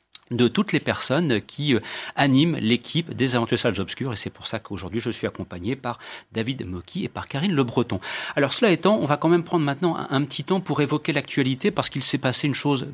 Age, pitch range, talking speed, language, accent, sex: 40-59, 105-140 Hz, 230 wpm, French, French, male